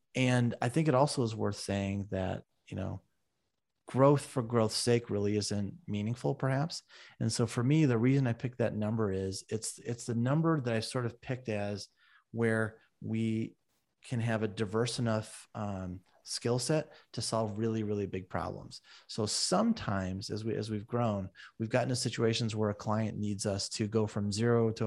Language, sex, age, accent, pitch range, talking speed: English, male, 30-49, American, 100-115 Hz, 185 wpm